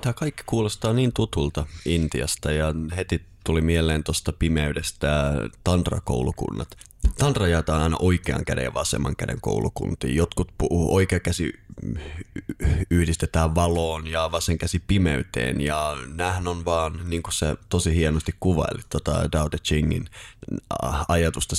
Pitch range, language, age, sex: 75-90 Hz, Finnish, 30-49, male